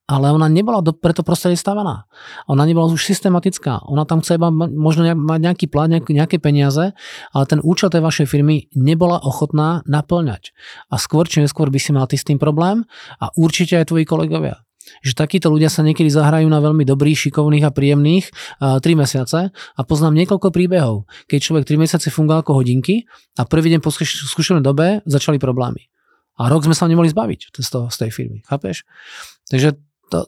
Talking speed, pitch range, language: 185 wpm, 140-165 Hz, Slovak